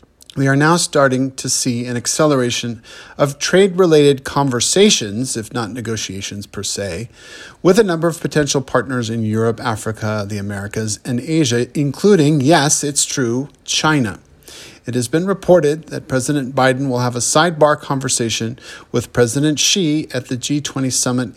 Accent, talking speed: American, 150 wpm